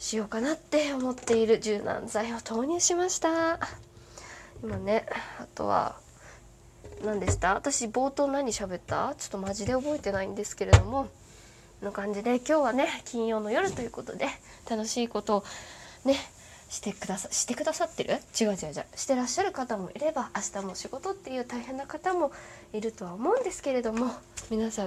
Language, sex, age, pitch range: Japanese, female, 20-39, 215-300 Hz